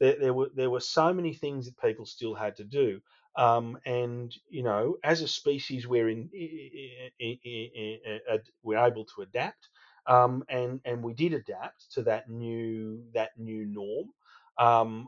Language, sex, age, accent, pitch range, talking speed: English, male, 40-59, Australian, 110-130 Hz, 155 wpm